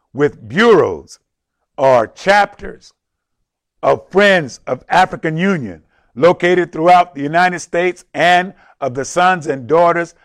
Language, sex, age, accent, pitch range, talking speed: English, male, 50-69, American, 160-180 Hz, 115 wpm